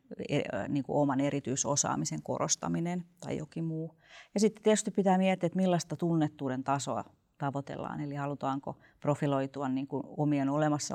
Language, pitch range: Finnish, 140-170 Hz